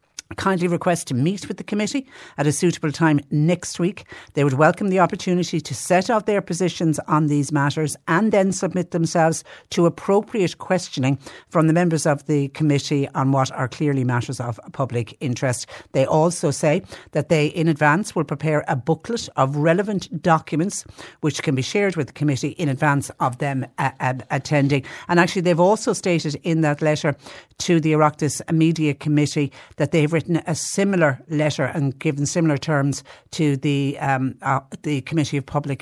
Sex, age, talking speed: female, 60-79, 175 wpm